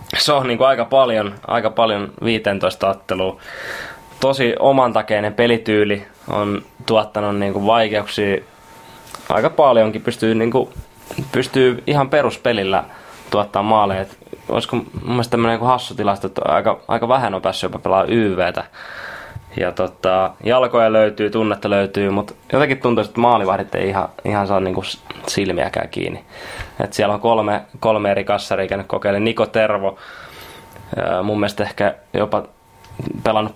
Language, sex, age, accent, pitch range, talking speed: Finnish, male, 20-39, native, 100-115 Hz, 135 wpm